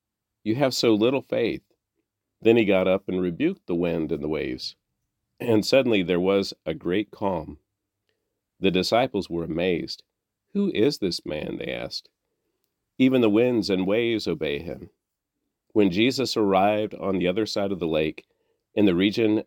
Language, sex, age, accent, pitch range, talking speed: English, male, 40-59, American, 90-130 Hz, 165 wpm